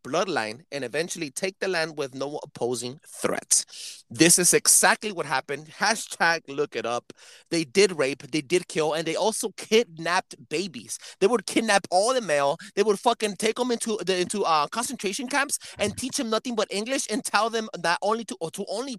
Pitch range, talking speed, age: 160-210 Hz, 195 wpm, 30-49